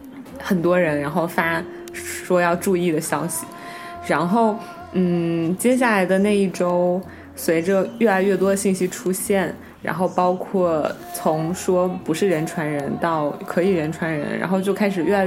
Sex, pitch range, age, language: female, 170-205 Hz, 20-39, Chinese